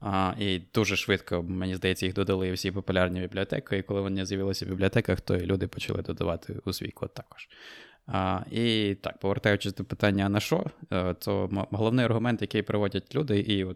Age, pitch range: 20-39, 95-105 Hz